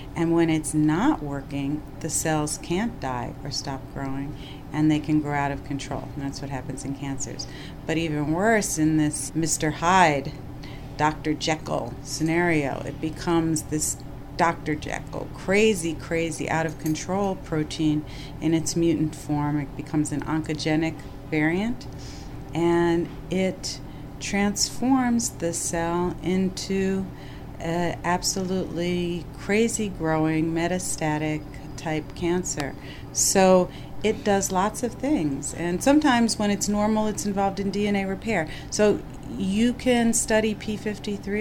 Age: 40-59